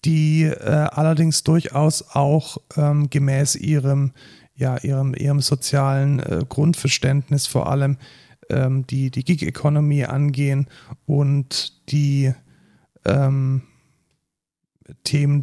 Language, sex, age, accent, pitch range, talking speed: German, male, 40-59, German, 135-150 Hz, 95 wpm